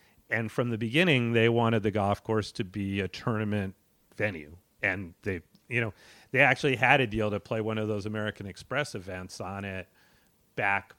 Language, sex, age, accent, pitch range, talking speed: English, male, 40-59, American, 100-120 Hz, 185 wpm